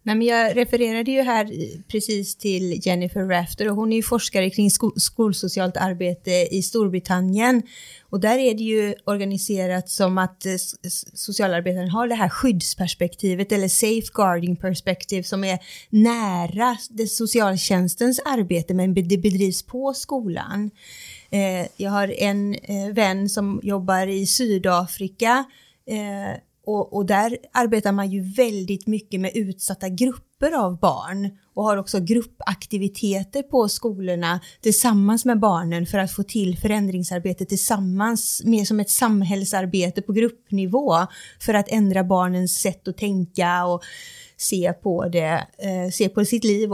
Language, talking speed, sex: Swedish, 130 wpm, female